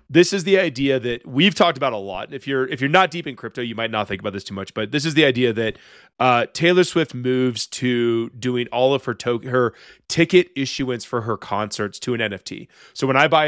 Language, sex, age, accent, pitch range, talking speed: English, male, 30-49, American, 120-145 Hz, 245 wpm